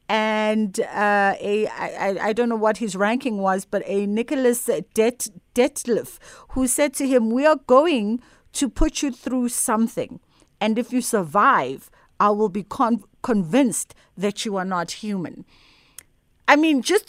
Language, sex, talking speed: English, female, 160 wpm